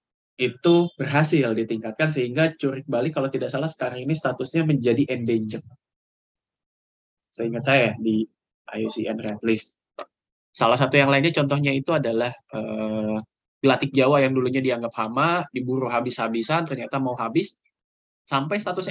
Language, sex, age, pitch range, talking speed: Indonesian, male, 10-29, 110-140 Hz, 130 wpm